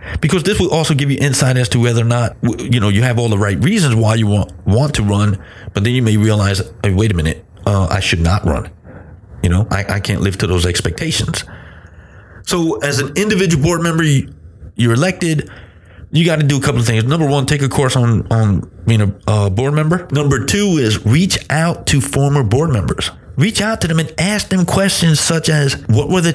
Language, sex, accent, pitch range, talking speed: English, male, American, 110-150 Hz, 225 wpm